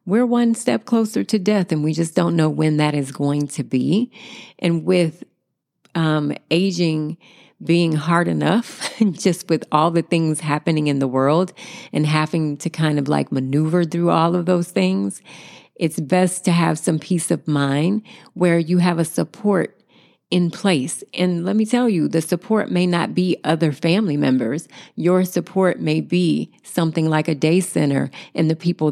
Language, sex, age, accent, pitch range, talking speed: English, female, 40-59, American, 150-175 Hz, 175 wpm